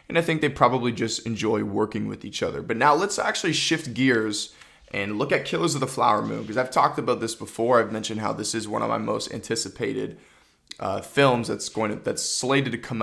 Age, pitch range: 20-39, 110-140 Hz